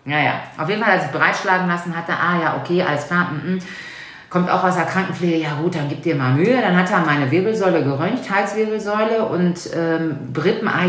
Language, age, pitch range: German, 40-59, 145-190 Hz